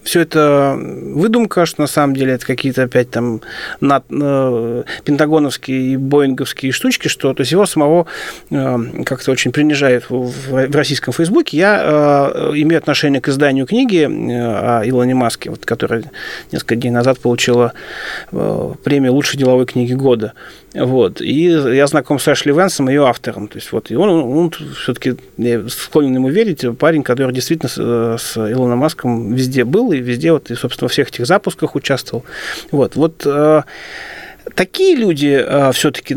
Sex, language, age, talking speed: male, Russian, 30-49, 150 wpm